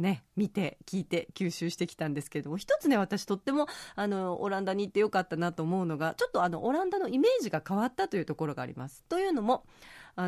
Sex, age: female, 30-49